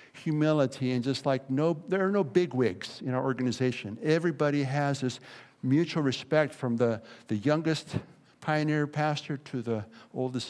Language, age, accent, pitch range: English, 60-79, American, 130-165 Hz